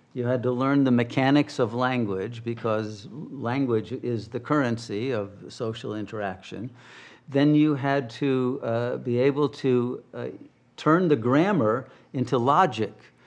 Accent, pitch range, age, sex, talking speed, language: American, 120-140 Hz, 50-69, male, 135 wpm, English